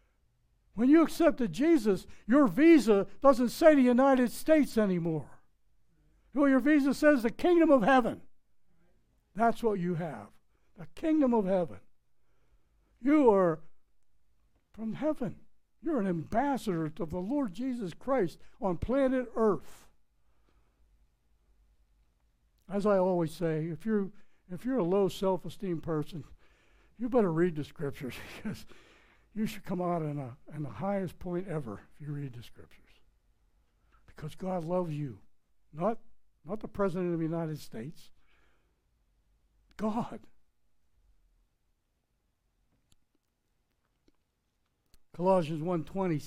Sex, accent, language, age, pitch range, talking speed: male, American, English, 60-79, 150-220 Hz, 120 wpm